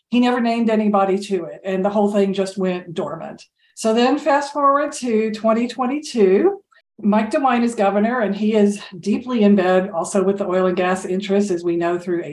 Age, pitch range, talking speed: 50-69, 190-225 Hz, 195 wpm